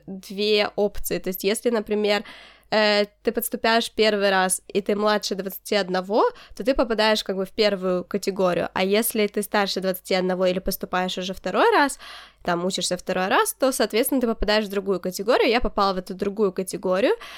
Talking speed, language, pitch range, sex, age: 175 wpm, Ukrainian, 200-235 Hz, female, 20-39